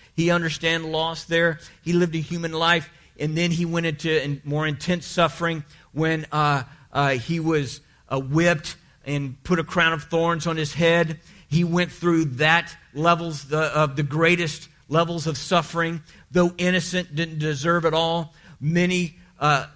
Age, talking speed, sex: 50-69, 160 wpm, male